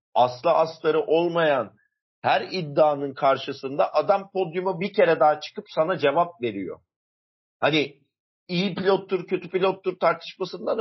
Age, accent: 50-69, native